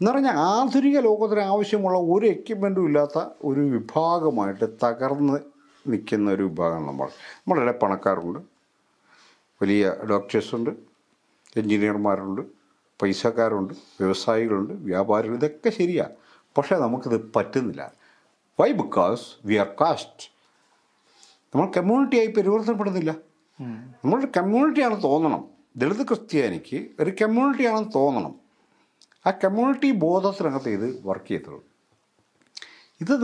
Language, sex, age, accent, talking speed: English, male, 50-69, Indian, 70 wpm